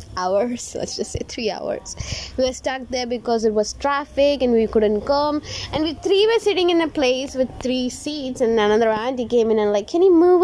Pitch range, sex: 210-270 Hz, female